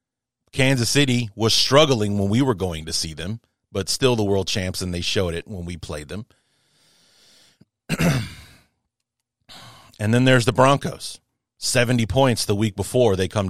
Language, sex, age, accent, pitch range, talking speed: English, male, 30-49, American, 105-135 Hz, 160 wpm